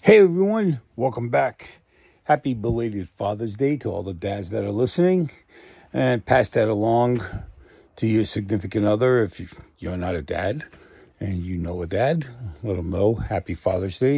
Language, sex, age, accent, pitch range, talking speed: English, male, 50-69, American, 95-130 Hz, 160 wpm